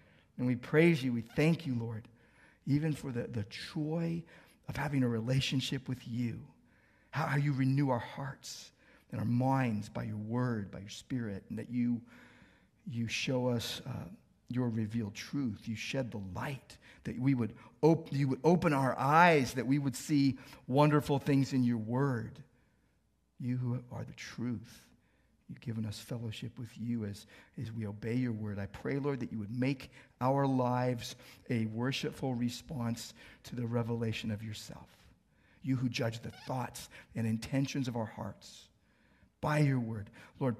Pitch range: 115-135 Hz